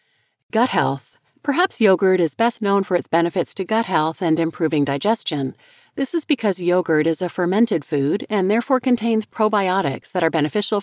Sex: female